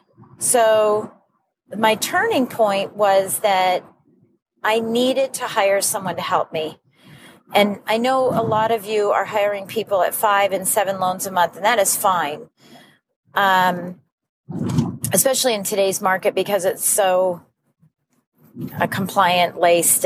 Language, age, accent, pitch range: English, 40-59, American, 185-225 Hz